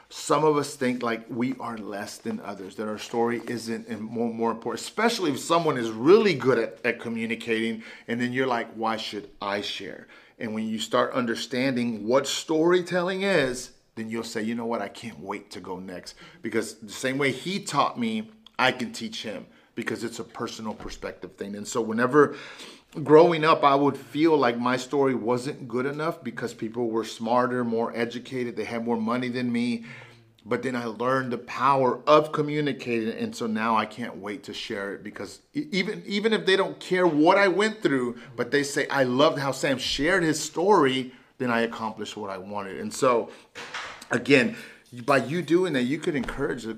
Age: 40-59